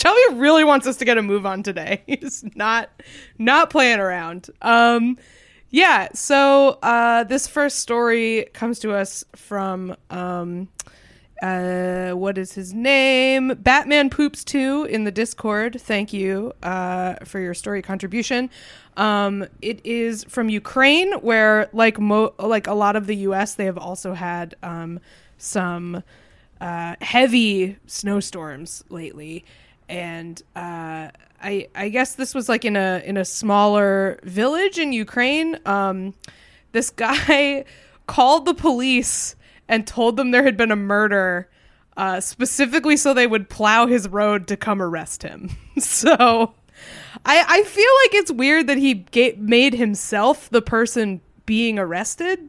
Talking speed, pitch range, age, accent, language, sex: 145 wpm, 195-255 Hz, 20-39, American, English, female